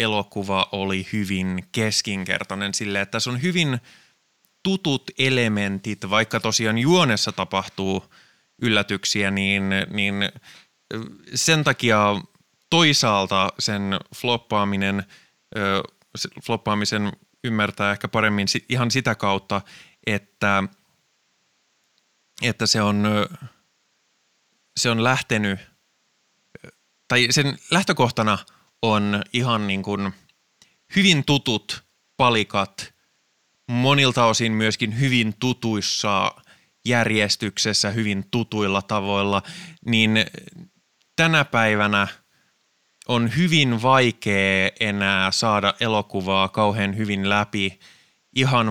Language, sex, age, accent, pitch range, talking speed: Finnish, male, 20-39, native, 100-120 Hz, 85 wpm